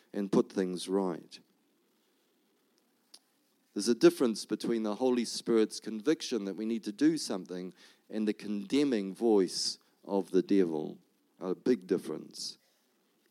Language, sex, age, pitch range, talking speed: English, male, 50-69, 110-155 Hz, 125 wpm